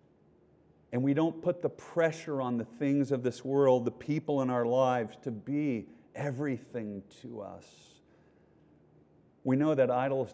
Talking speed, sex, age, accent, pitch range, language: 150 wpm, male, 50-69, American, 130-185 Hz, English